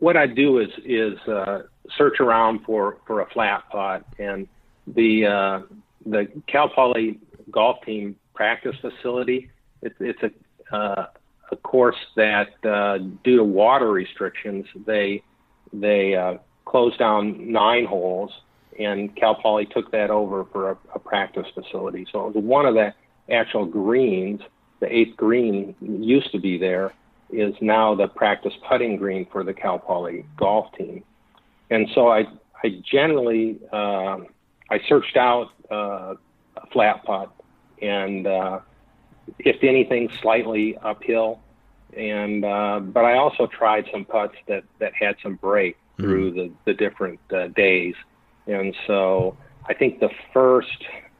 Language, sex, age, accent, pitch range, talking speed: English, male, 50-69, American, 95-115 Hz, 140 wpm